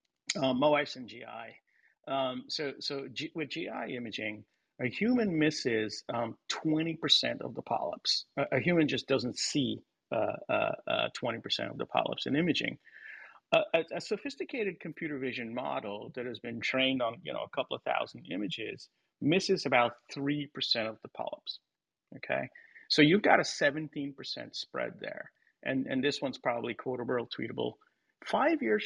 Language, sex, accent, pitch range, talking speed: English, male, American, 130-170 Hz, 160 wpm